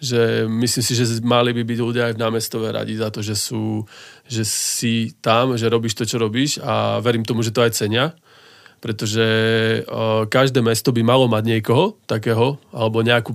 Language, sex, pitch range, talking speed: Slovak, male, 115-130 Hz, 185 wpm